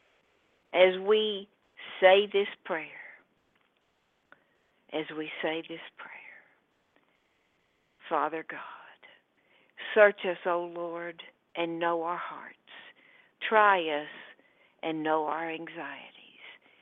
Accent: American